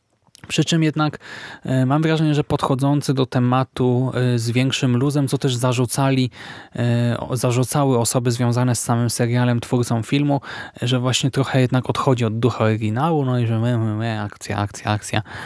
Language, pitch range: Polish, 115-135 Hz